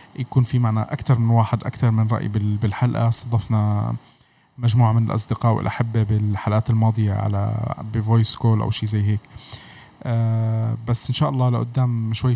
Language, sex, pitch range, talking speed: Arabic, male, 110-125 Hz, 145 wpm